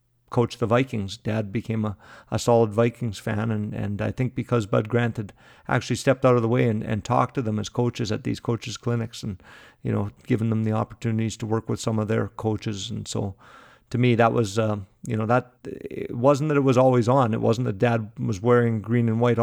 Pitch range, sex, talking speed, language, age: 110-120 Hz, male, 230 wpm, English, 50-69